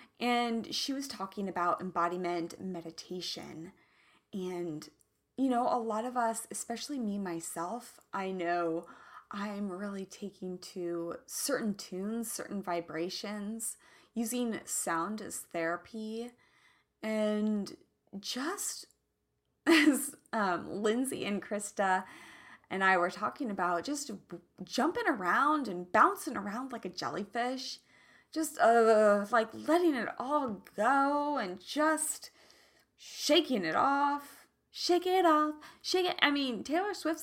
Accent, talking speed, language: American, 120 wpm, English